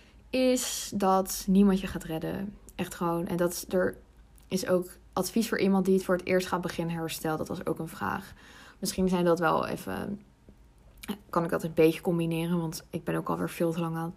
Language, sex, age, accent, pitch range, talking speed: Dutch, female, 20-39, Dutch, 170-195 Hz, 210 wpm